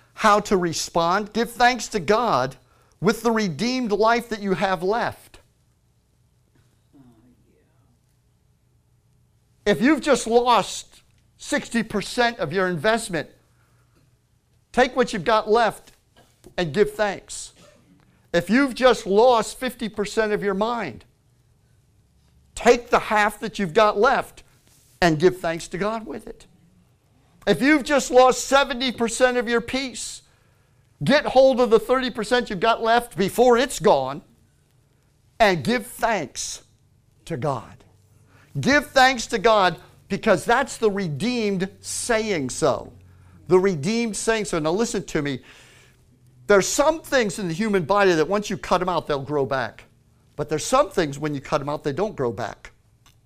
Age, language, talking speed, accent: 50-69, English, 140 wpm, American